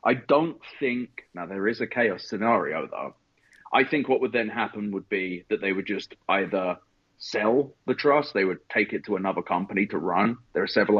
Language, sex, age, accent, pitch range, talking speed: English, male, 30-49, British, 105-170 Hz, 205 wpm